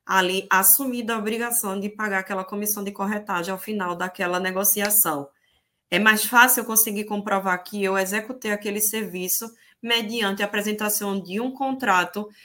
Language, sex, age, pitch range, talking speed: Portuguese, female, 20-39, 190-235 Hz, 145 wpm